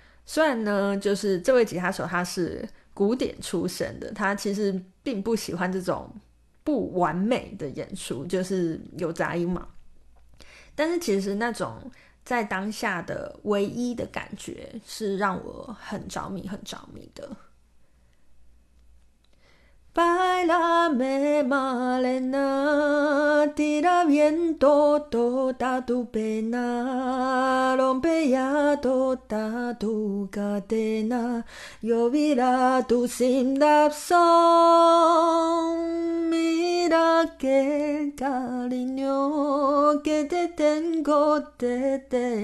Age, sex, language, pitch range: 20-39, female, Chinese, 215-295 Hz